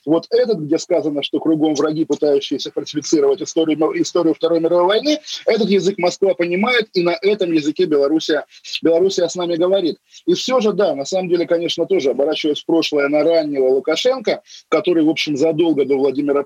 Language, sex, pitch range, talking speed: Russian, male, 150-210 Hz, 170 wpm